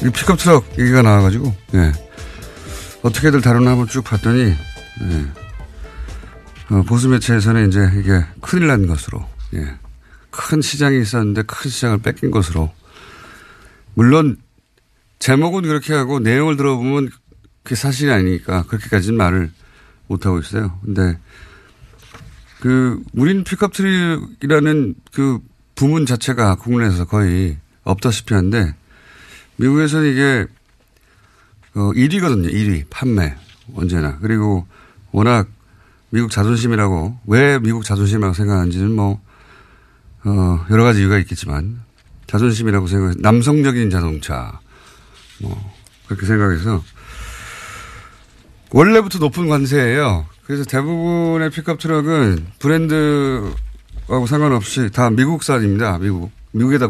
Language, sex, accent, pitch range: Korean, male, native, 95-130 Hz